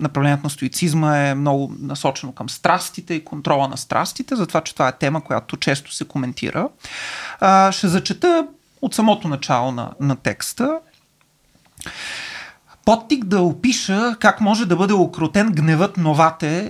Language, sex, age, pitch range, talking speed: Bulgarian, male, 30-49, 155-195 Hz, 145 wpm